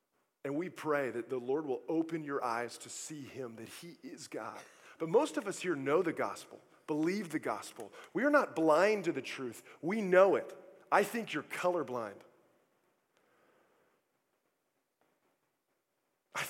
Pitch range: 150-235 Hz